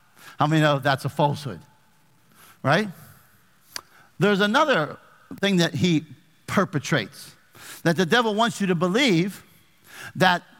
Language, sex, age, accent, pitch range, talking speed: English, male, 50-69, American, 155-205 Hz, 120 wpm